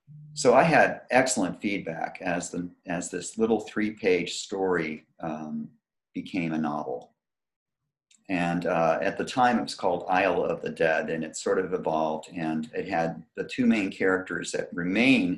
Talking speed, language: 165 wpm, English